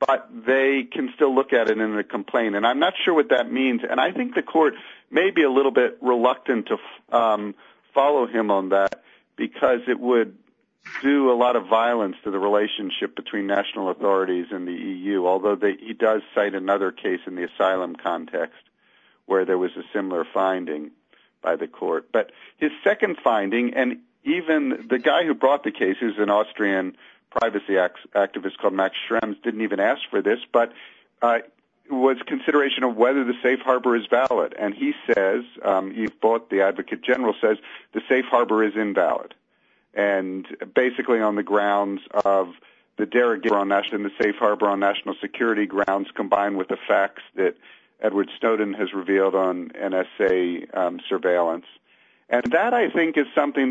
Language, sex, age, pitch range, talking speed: English, male, 50-69, 100-130 Hz, 175 wpm